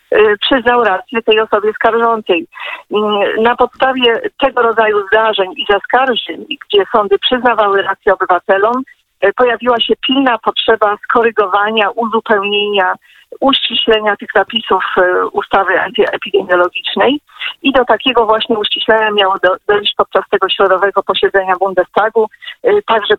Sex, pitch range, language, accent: female, 200-245 Hz, Polish, native